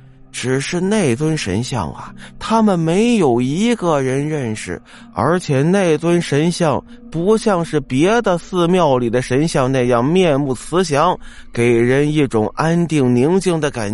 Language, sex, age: Chinese, male, 20-39